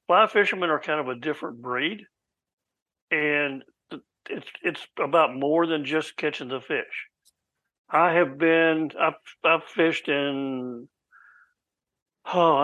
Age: 60-79